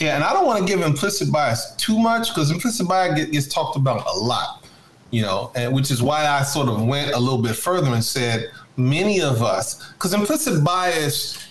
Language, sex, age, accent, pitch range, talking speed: English, male, 30-49, American, 120-160 Hz, 215 wpm